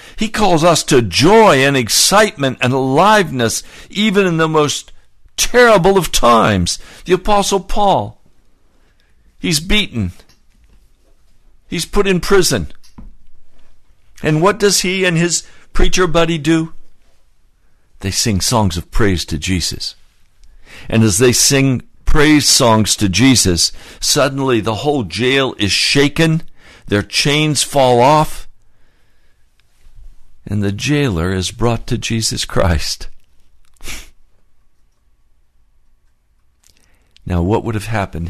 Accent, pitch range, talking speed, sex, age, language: American, 85-135 Hz, 115 wpm, male, 60-79, English